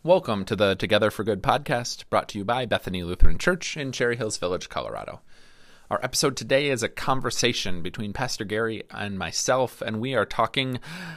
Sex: male